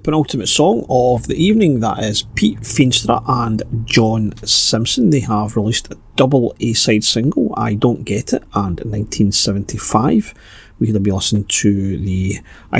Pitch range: 105-130 Hz